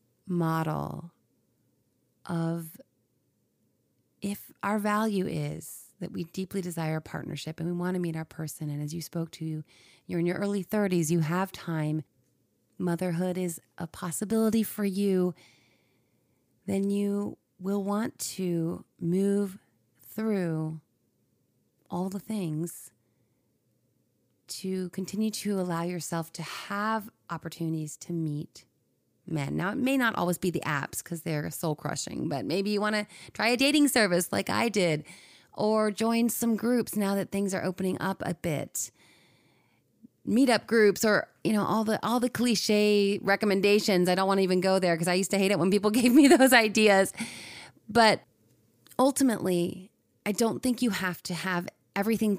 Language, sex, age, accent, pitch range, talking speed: English, female, 30-49, American, 155-205 Hz, 155 wpm